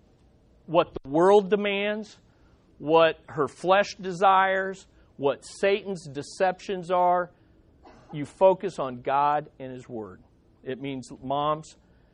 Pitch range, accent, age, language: 145-205 Hz, American, 50-69, English